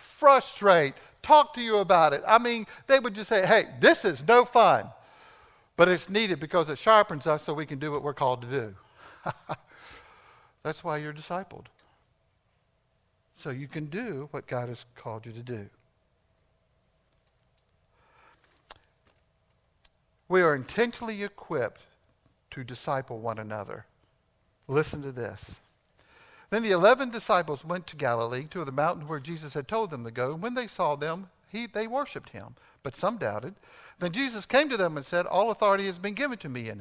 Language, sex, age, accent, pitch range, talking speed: English, male, 60-79, American, 125-210 Hz, 165 wpm